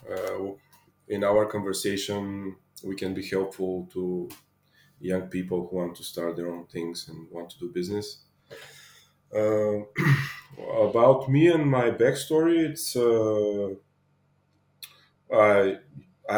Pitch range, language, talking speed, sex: 95-115 Hz, English, 110 wpm, male